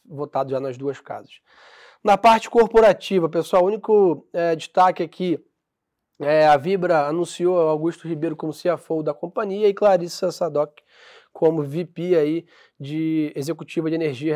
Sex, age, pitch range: male, 20-39, 150-180 Hz